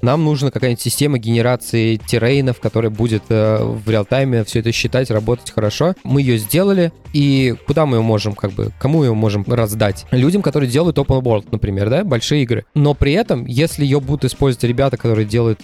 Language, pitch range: Russian, 115-140 Hz